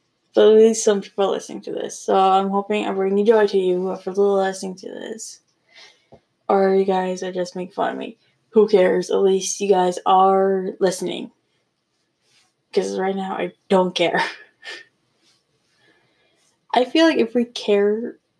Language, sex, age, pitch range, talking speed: English, female, 10-29, 190-225 Hz, 165 wpm